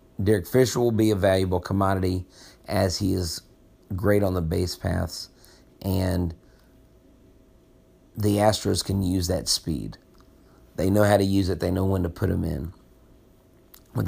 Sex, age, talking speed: male, 40-59, 155 wpm